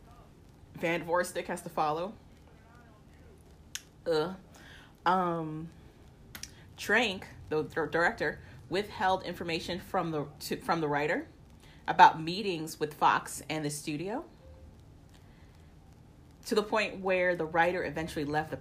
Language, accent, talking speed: English, American, 110 wpm